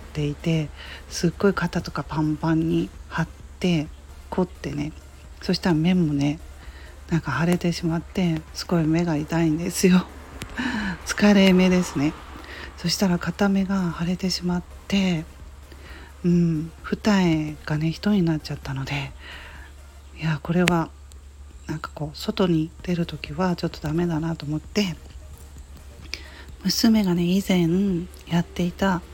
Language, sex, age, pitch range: Japanese, female, 40-59, 145-185 Hz